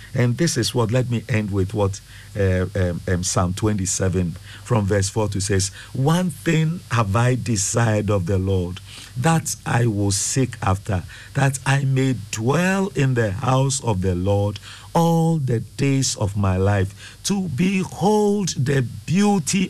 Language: English